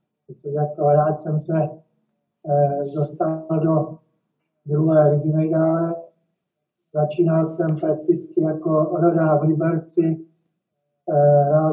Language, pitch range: Czech, 150-175 Hz